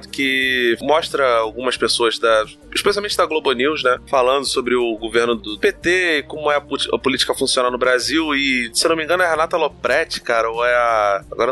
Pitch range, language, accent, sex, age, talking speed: 120-170 Hz, Portuguese, Brazilian, male, 20-39, 205 wpm